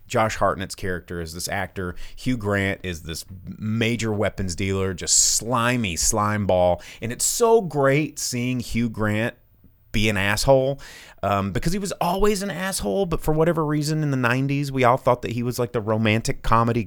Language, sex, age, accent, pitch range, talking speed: English, male, 30-49, American, 90-120 Hz, 180 wpm